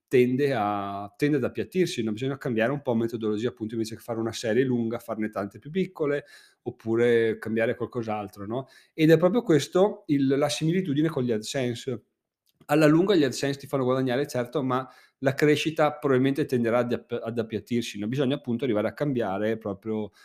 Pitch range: 110-135 Hz